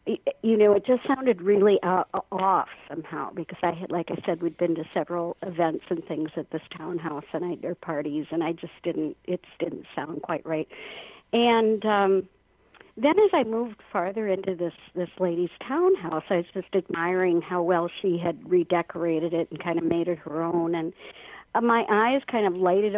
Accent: American